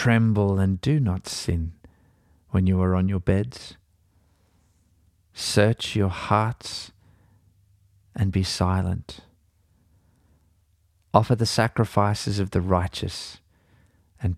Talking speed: 100 wpm